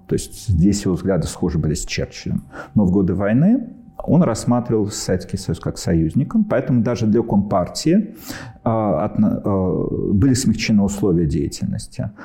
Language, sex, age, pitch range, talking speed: Russian, male, 50-69, 95-130 Hz, 130 wpm